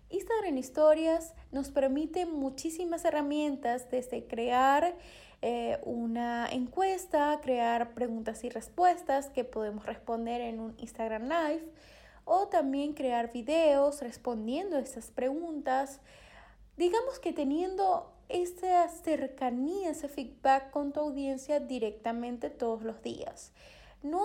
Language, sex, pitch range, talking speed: Spanish, female, 240-310 Hz, 110 wpm